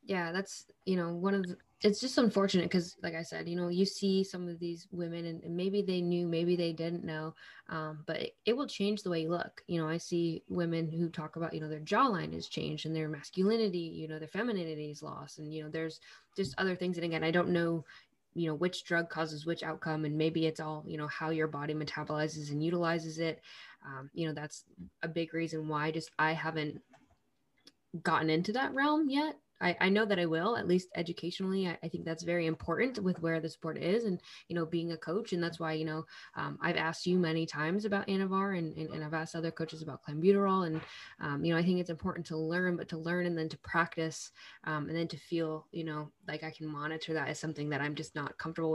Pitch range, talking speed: 155-180 Hz, 240 wpm